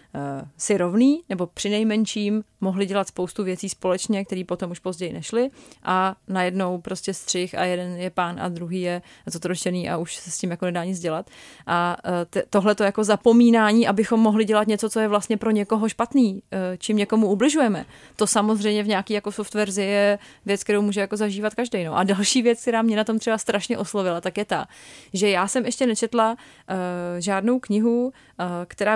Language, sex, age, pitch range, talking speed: Czech, female, 30-49, 180-215 Hz, 180 wpm